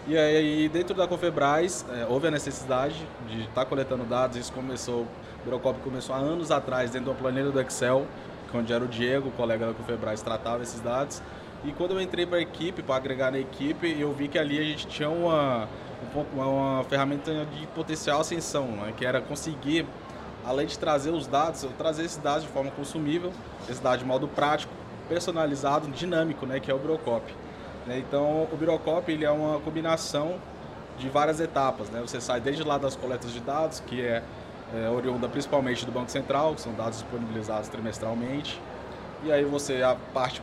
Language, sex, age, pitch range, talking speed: Portuguese, male, 20-39, 125-155 Hz, 185 wpm